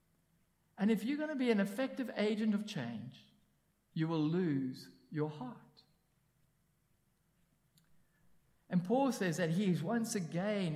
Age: 50-69